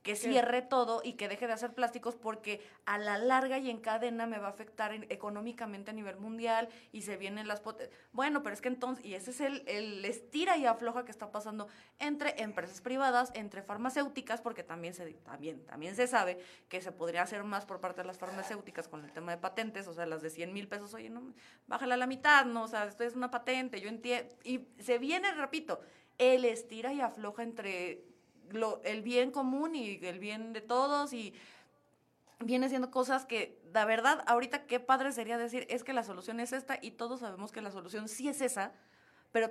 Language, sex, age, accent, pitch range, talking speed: Spanish, female, 20-39, Mexican, 200-250 Hz, 215 wpm